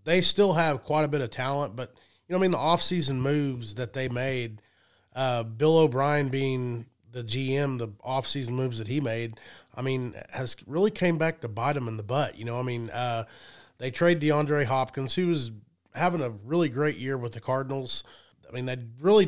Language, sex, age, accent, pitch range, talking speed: English, male, 30-49, American, 120-150 Hz, 205 wpm